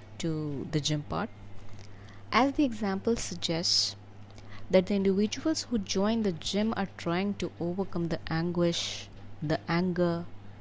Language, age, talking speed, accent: English, 20-39, 130 wpm, Indian